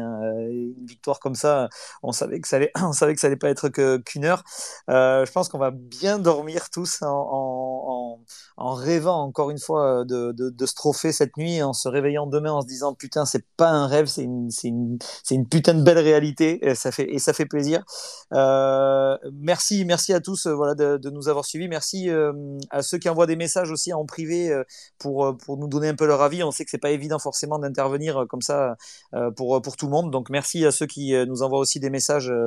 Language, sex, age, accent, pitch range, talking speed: French, male, 30-49, French, 125-155 Hz, 235 wpm